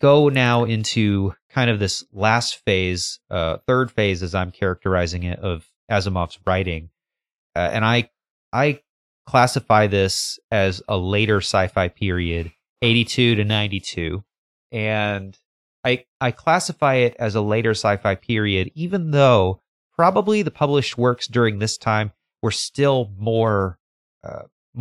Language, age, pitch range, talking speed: English, 30-49, 95-120 Hz, 135 wpm